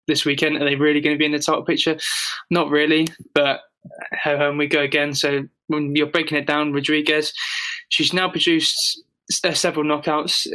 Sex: male